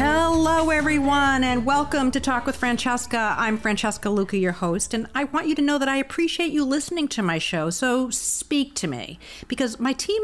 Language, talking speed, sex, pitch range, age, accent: English, 200 wpm, female, 190-280 Hz, 50-69, American